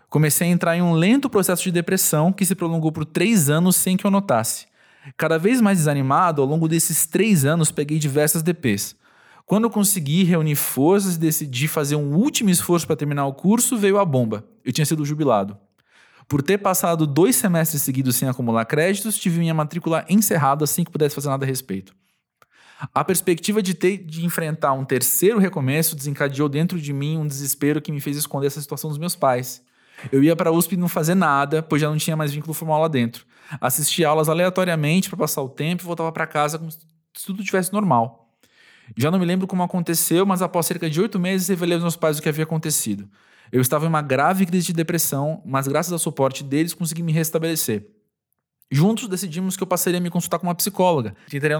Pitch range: 145-180 Hz